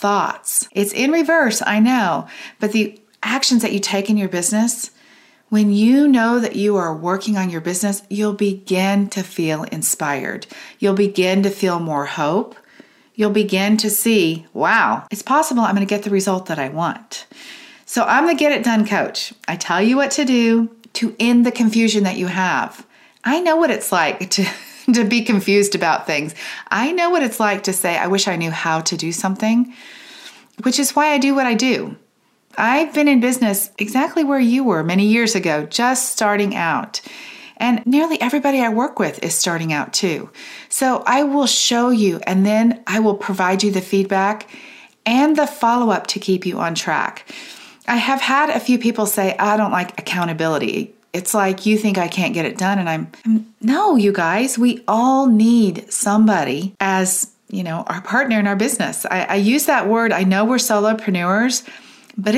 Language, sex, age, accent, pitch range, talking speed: English, female, 40-59, American, 195-250 Hz, 190 wpm